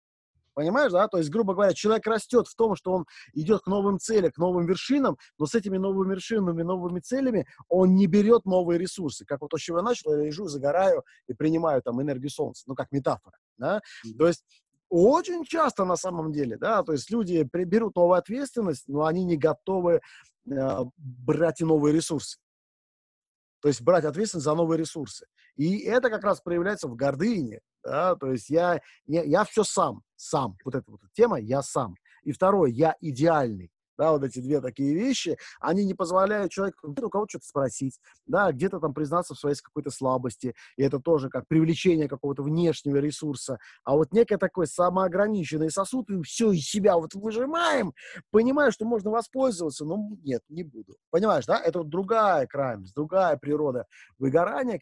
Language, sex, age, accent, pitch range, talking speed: Russian, male, 30-49, native, 145-195 Hz, 180 wpm